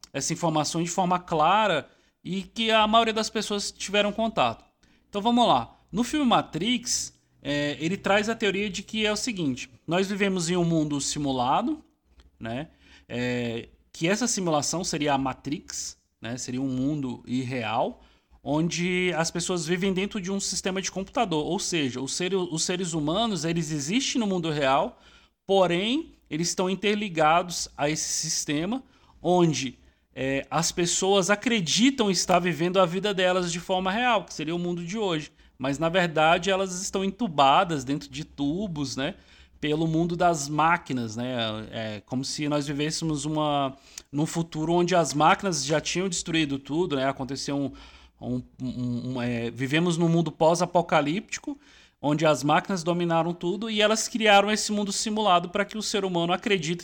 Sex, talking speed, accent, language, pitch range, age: male, 155 wpm, Brazilian, Portuguese, 145-195 Hz, 20-39